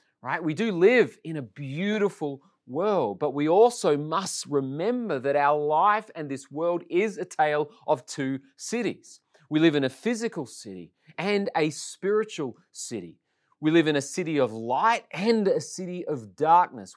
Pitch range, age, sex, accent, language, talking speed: 130-175 Hz, 30-49, male, Australian, English, 165 wpm